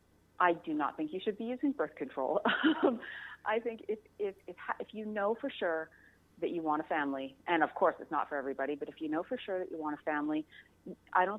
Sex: female